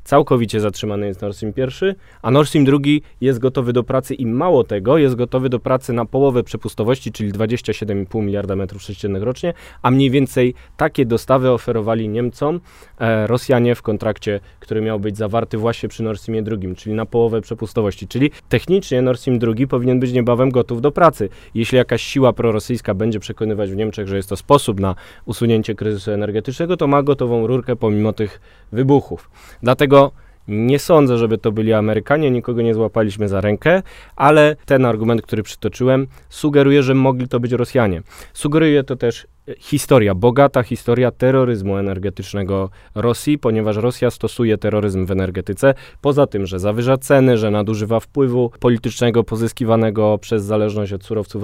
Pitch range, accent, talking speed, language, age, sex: 105-130 Hz, native, 160 wpm, Polish, 20-39, male